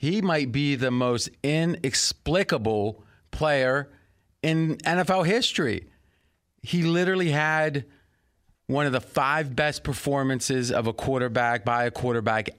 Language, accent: English, American